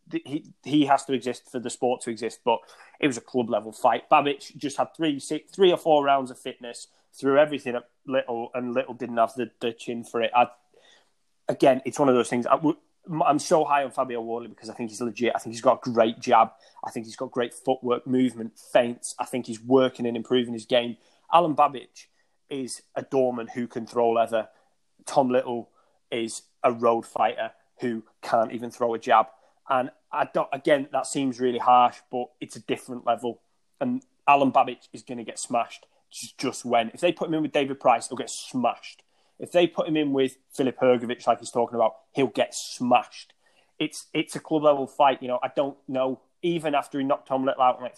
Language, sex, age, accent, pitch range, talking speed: English, male, 20-39, British, 120-140 Hz, 215 wpm